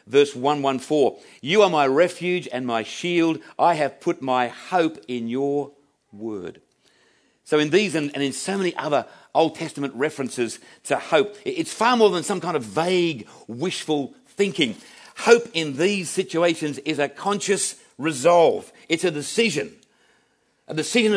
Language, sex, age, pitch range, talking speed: English, male, 50-69, 130-190 Hz, 150 wpm